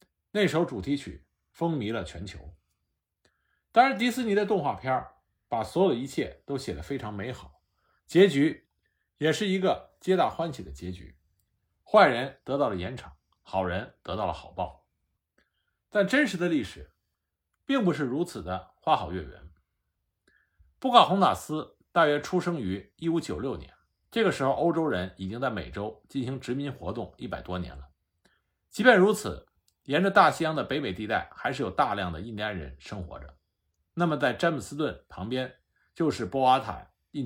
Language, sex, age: Chinese, male, 50-69